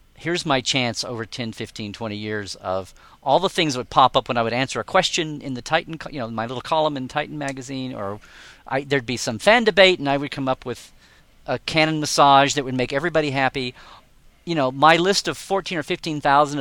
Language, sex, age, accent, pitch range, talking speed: English, male, 40-59, American, 125-150 Hz, 225 wpm